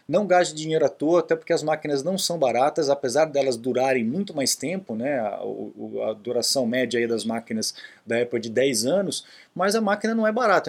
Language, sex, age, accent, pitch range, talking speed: Portuguese, male, 20-39, Brazilian, 130-180 Hz, 220 wpm